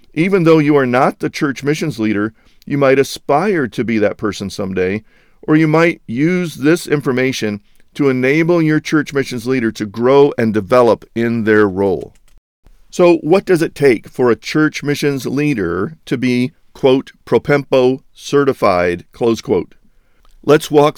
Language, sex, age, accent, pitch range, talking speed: English, male, 50-69, American, 110-145 Hz, 155 wpm